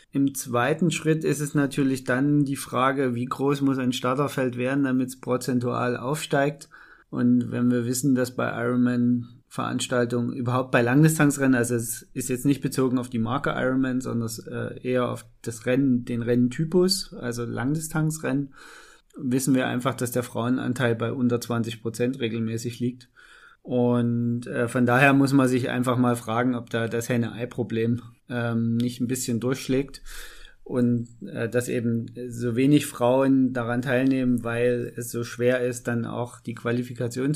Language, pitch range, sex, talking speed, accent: German, 120-135 Hz, male, 150 wpm, German